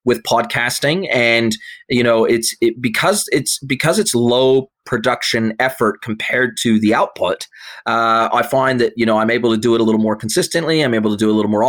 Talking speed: 210 wpm